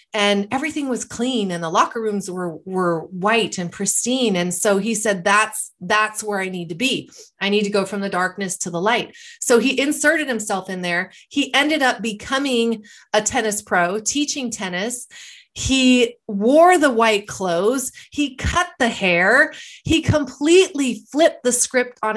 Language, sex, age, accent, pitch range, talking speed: English, female, 30-49, American, 190-250 Hz, 175 wpm